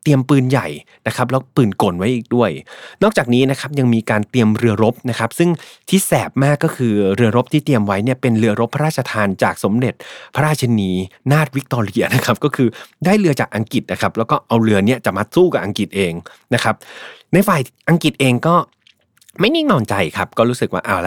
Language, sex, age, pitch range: Thai, male, 30-49, 105-135 Hz